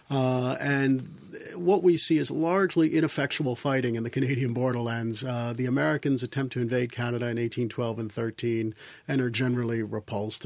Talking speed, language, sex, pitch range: 160 wpm, English, male, 120-145 Hz